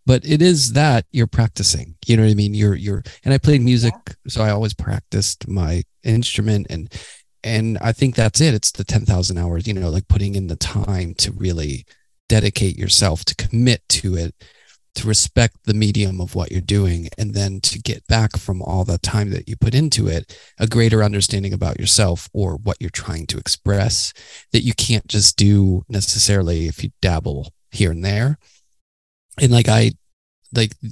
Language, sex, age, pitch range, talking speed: English, male, 30-49, 95-115 Hz, 190 wpm